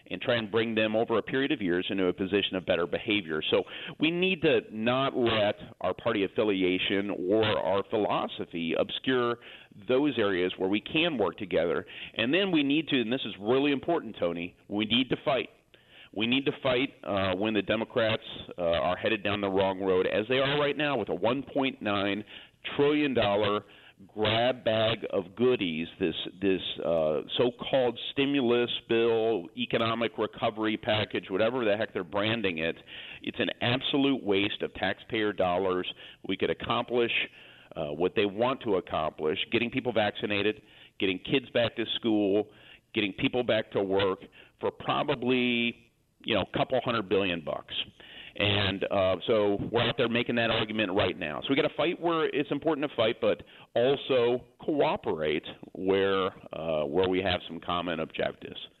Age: 40-59